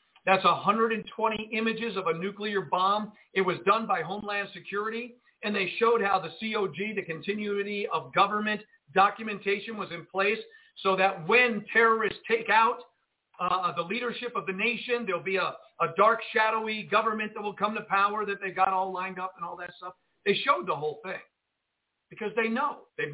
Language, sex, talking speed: English, male, 180 wpm